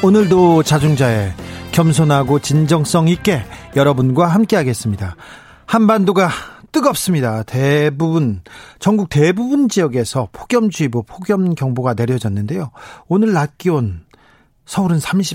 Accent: native